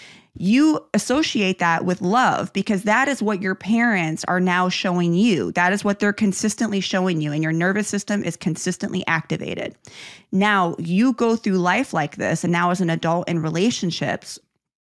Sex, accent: female, American